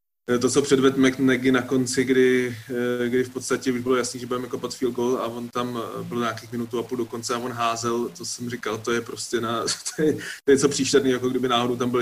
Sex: male